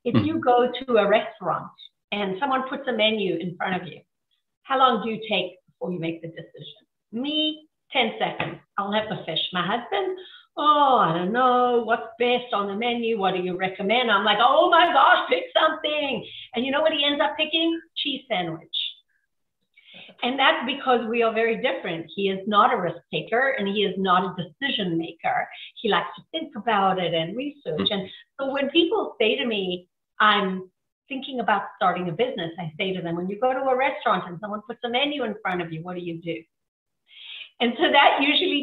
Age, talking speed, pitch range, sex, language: 50-69, 205 wpm, 190-275 Hz, female, English